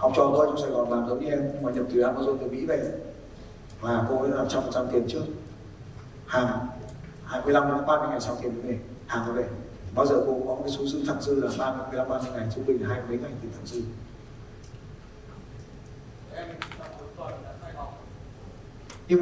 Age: 30-49